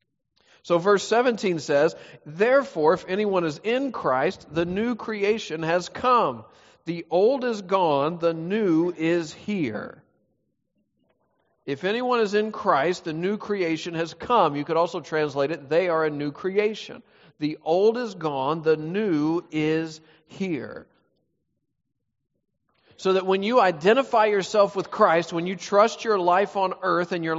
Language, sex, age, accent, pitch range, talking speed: English, male, 40-59, American, 160-210 Hz, 150 wpm